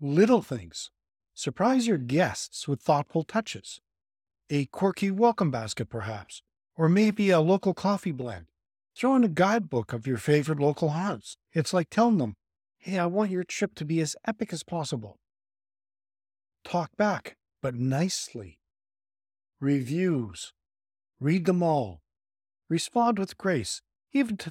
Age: 50-69